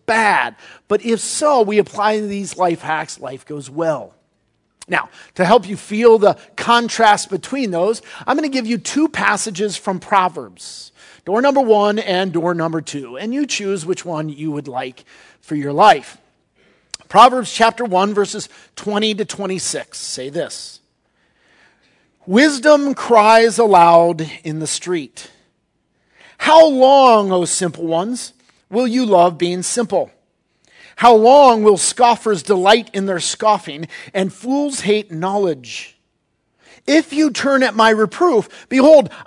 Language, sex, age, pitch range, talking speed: English, male, 40-59, 185-250 Hz, 140 wpm